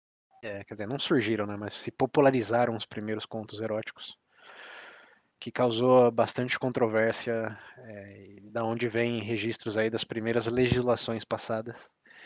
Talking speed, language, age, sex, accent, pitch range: 130 wpm, Portuguese, 20-39, male, Brazilian, 110-125 Hz